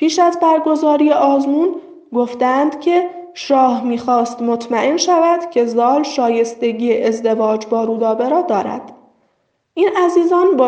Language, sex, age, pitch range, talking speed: Persian, female, 10-29, 235-305 Hz, 110 wpm